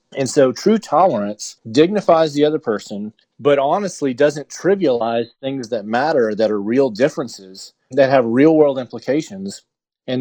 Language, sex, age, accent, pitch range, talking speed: English, male, 40-59, American, 115-155 Hz, 145 wpm